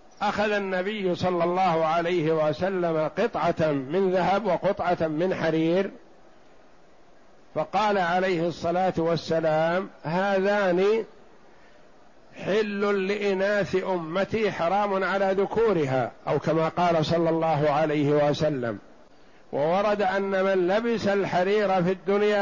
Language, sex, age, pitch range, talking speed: Arabic, male, 60-79, 160-195 Hz, 100 wpm